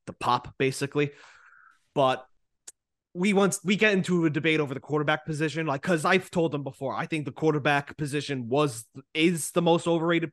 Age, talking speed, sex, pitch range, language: 20-39, 180 wpm, male, 135-180 Hz, English